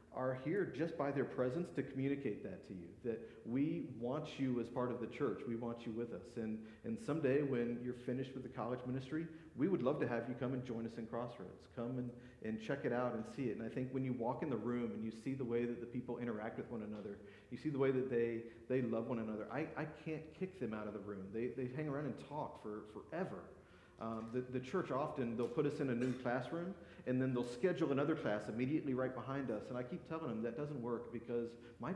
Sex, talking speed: male, 255 wpm